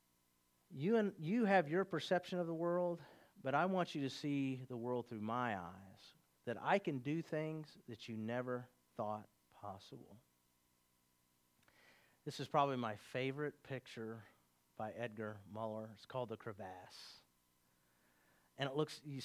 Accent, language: American, English